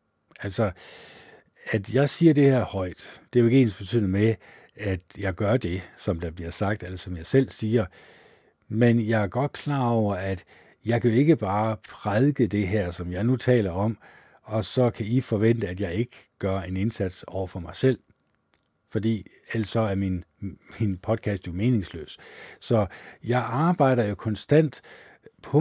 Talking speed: 180 wpm